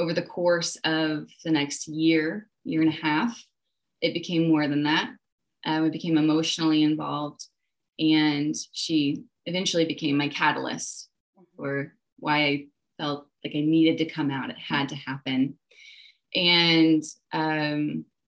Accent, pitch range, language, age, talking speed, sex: American, 150-175 Hz, English, 20-39, 140 wpm, female